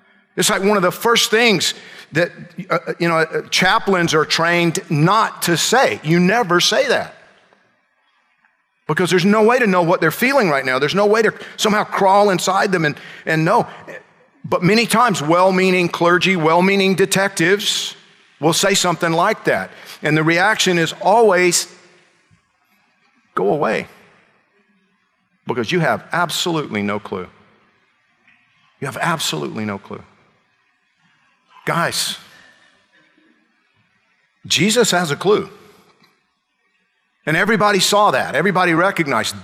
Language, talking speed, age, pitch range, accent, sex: English, 130 wpm, 50-69, 140-200 Hz, American, male